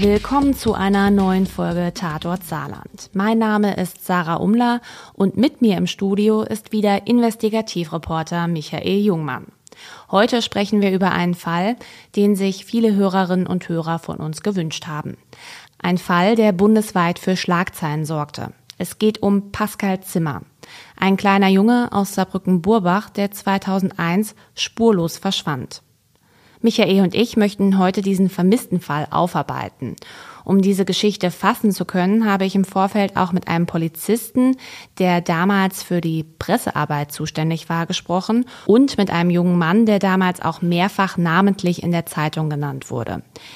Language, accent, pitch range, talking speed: German, German, 170-205 Hz, 145 wpm